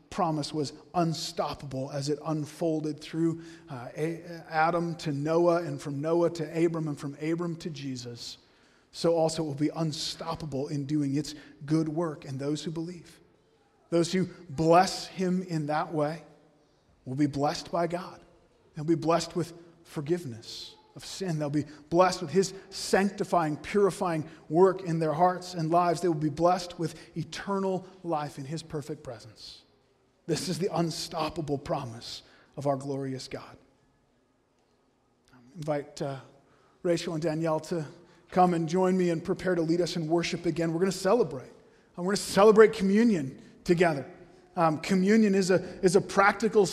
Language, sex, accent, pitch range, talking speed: English, male, American, 150-185 Hz, 160 wpm